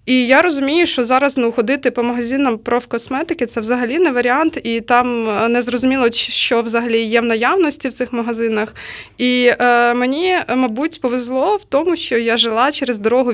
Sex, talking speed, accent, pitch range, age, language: female, 165 wpm, native, 225-270 Hz, 20-39, Ukrainian